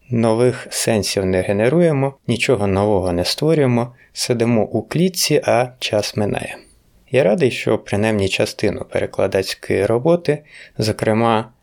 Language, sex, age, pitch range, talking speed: Ukrainian, male, 30-49, 100-135 Hz, 115 wpm